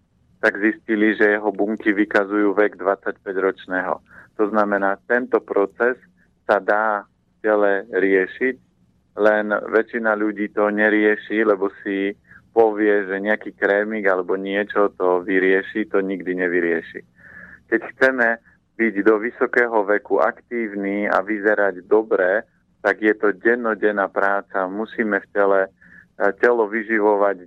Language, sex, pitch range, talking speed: Slovak, male, 100-115 Hz, 120 wpm